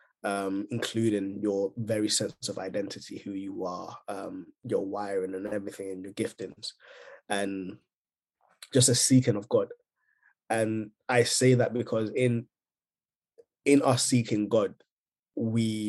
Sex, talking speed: male, 130 wpm